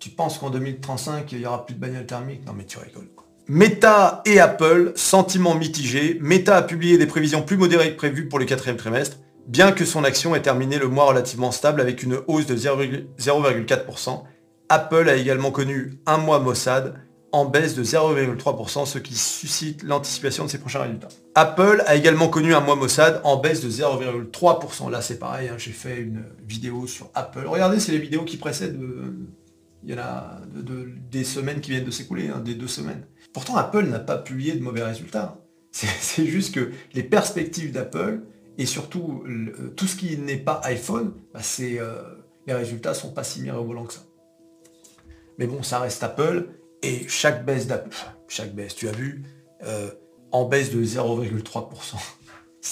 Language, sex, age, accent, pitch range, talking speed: French, male, 40-59, French, 125-165 Hz, 190 wpm